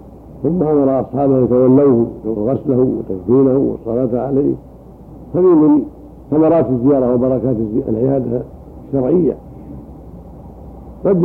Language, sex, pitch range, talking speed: Arabic, male, 120-140 Hz, 90 wpm